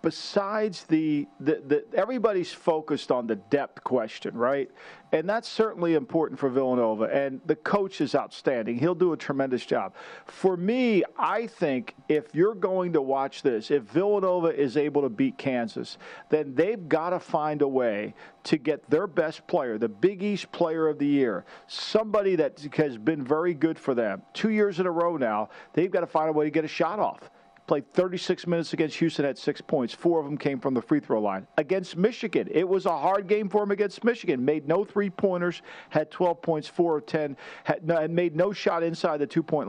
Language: English